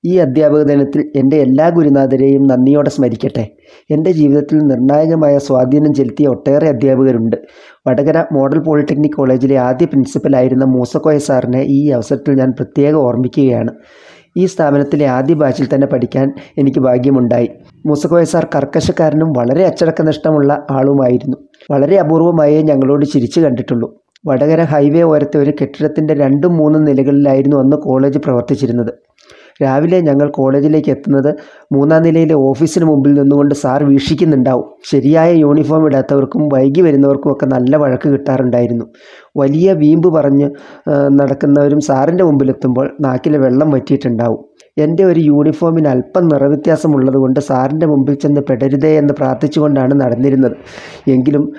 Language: Malayalam